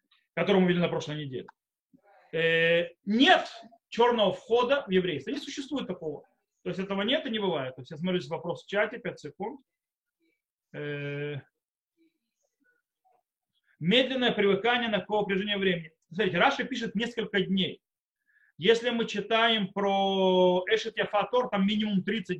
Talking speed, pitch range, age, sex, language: 120 wpm, 185-245 Hz, 30-49, male, Russian